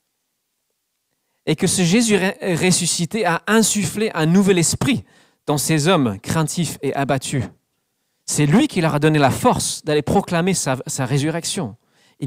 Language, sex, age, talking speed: French, male, 40-59, 145 wpm